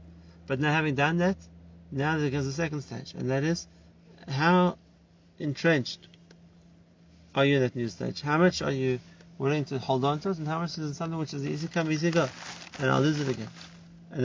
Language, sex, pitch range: English, male, 125-170 Hz